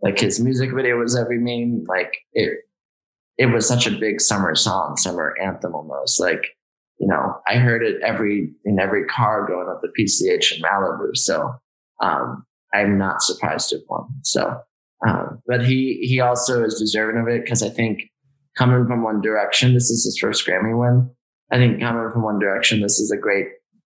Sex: male